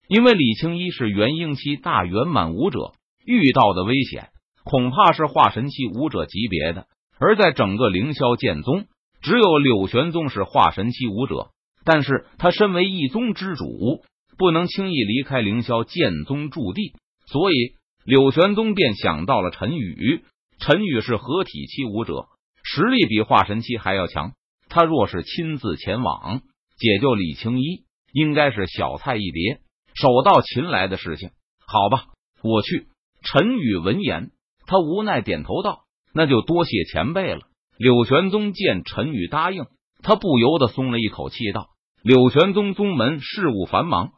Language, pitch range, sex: Chinese, 110-175 Hz, male